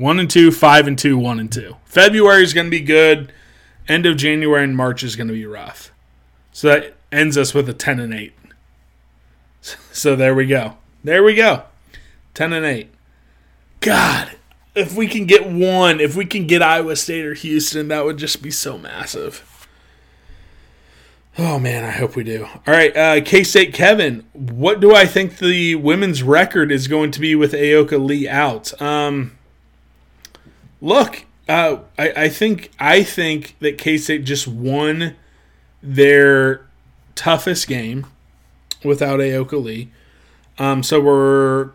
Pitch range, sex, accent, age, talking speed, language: 130-160 Hz, male, American, 20-39, 160 wpm, English